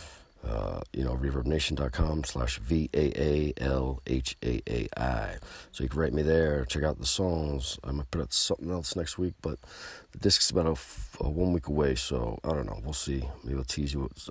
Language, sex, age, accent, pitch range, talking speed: English, male, 50-69, American, 70-90 Hz, 220 wpm